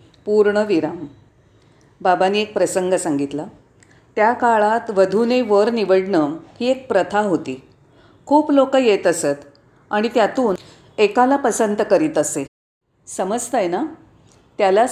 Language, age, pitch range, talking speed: Marathi, 40-59, 160-240 Hz, 115 wpm